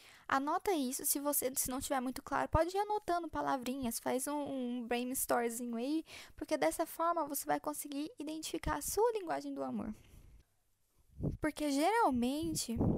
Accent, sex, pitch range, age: Brazilian, female, 260-320 Hz, 10-29